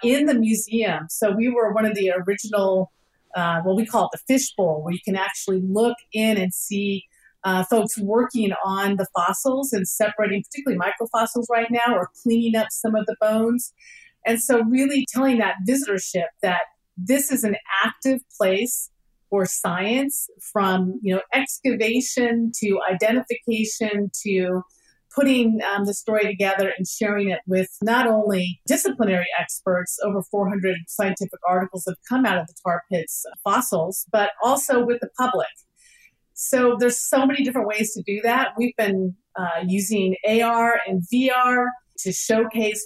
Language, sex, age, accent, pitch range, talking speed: English, female, 40-59, American, 195-240 Hz, 160 wpm